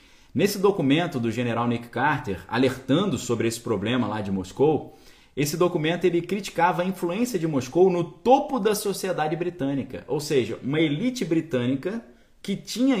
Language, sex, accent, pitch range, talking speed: Portuguese, male, Brazilian, 115-175 Hz, 150 wpm